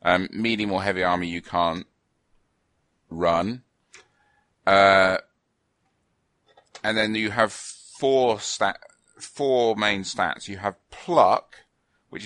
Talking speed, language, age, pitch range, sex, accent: 110 wpm, English, 40-59, 95-120 Hz, male, British